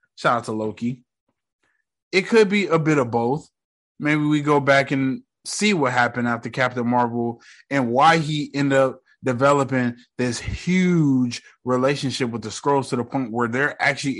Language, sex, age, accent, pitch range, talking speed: English, male, 20-39, American, 125-190 Hz, 170 wpm